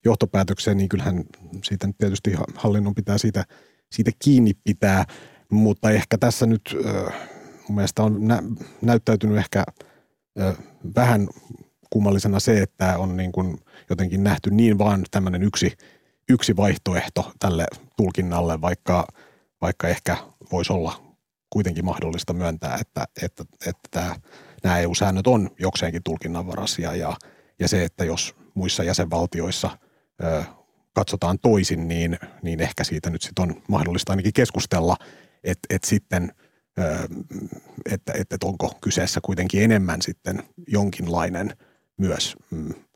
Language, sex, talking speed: Finnish, male, 120 wpm